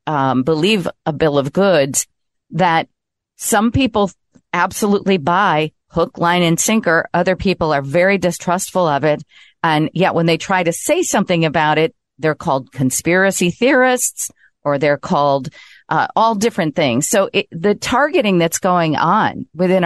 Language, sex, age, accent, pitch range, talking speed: English, female, 40-59, American, 145-190 Hz, 150 wpm